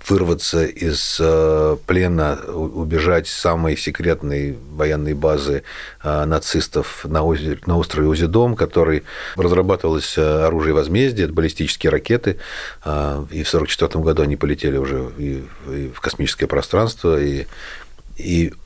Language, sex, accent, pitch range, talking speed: Russian, male, native, 75-90 Hz, 115 wpm